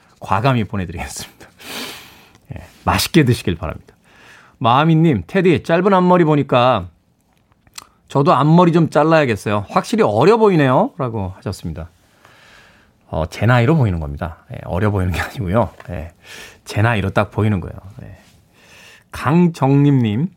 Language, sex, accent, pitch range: Korean, male, native, 105-150 Hz